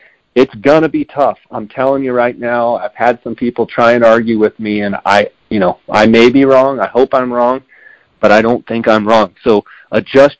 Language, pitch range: English, 105-125 Hz